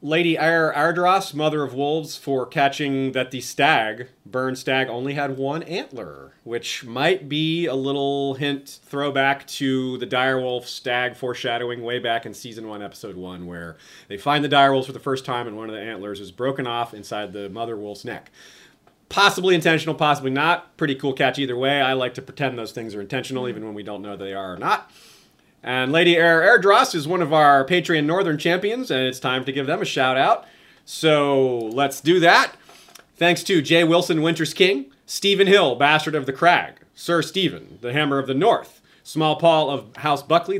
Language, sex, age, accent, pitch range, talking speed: English, male, 30-49, American, 125-160 Hz, 195 wpm